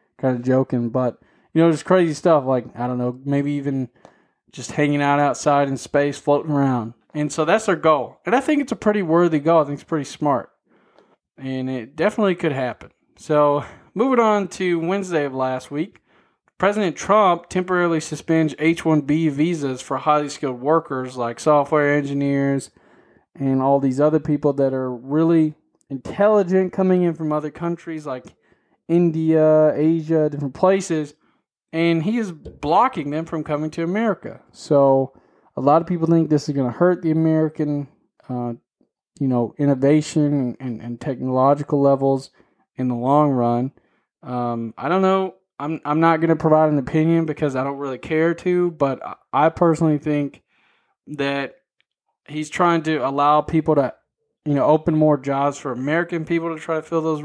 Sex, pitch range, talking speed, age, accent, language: male, 140-165 Hz, 170 wpm, 20-39, American, English